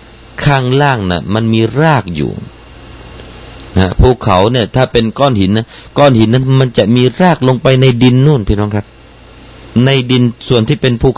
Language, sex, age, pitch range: Thai, male, 30-49, 90-120 Hz